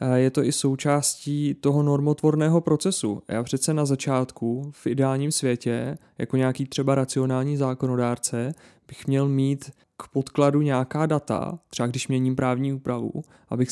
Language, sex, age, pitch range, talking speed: Czech, male, 30-49, 130-145 Hz, 140 wpm